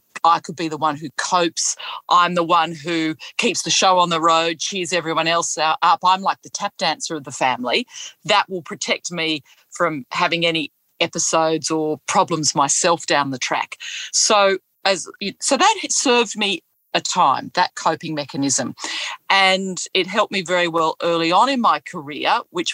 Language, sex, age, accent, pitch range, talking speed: English, female, 40-59, Australian, 160-200 Hz, 175 wpm